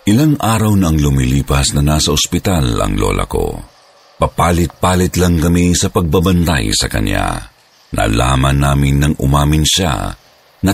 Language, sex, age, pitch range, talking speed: Filipino, male, 50-69, 70-95 Hz, 135 wpm